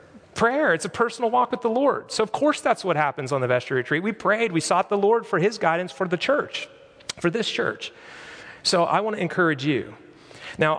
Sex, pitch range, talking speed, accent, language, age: male, 130-180 Hz, 220 wpm, American, English, 30-49